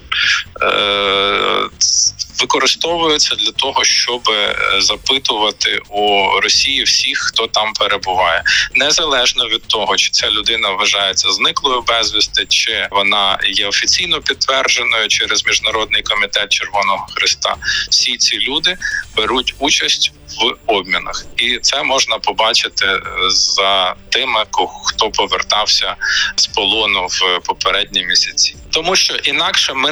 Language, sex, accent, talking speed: Ukrainian, male, native, 110 wpm